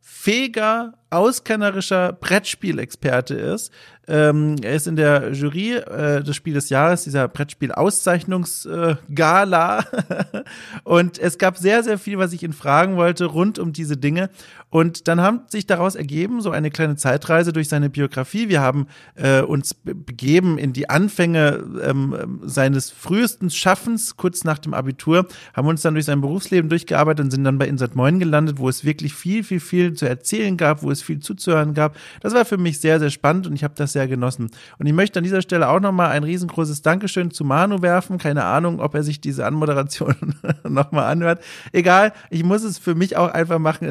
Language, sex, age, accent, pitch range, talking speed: German, male, 40-59, German, 145-180 Hz, 185 wpm